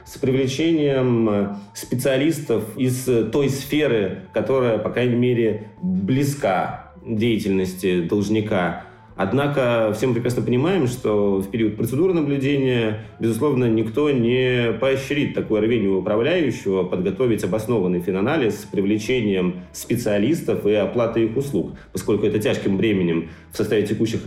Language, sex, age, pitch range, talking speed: Russian, male, 30-49, 105-135 Hz, 115 wpm